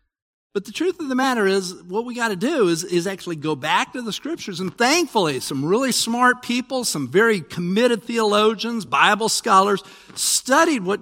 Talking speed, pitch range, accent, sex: 185 wpm, 175-250 Hz, American, male